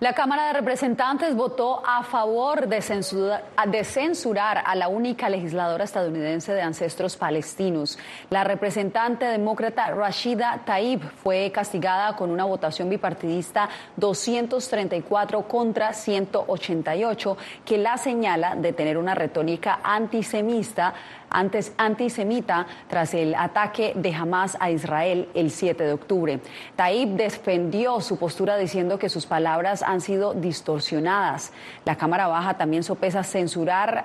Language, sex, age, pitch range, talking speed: Spanish, female, 30-49, 180-220 Hz, 120 wpm